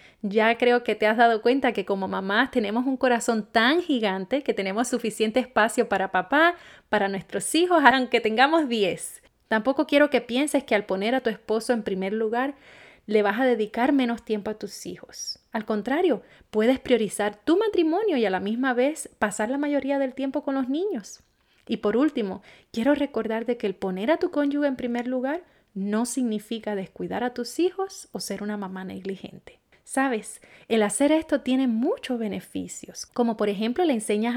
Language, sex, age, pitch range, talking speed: Spanish, female, 30-49, 210-275 Hz, 185 wpm